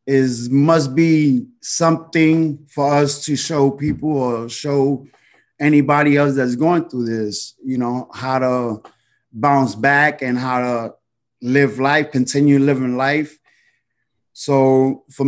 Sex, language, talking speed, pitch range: male, English, 130 wpm, 120-145 Hz